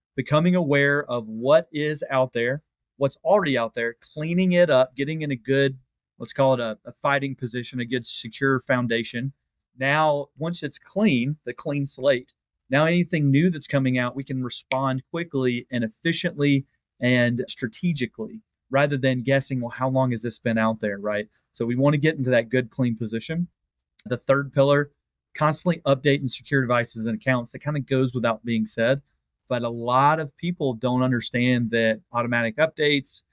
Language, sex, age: English, male, 30-49